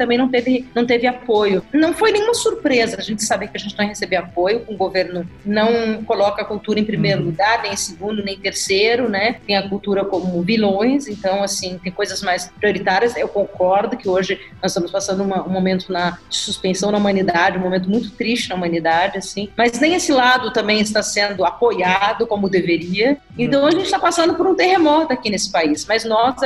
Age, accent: 40-59, Brazilian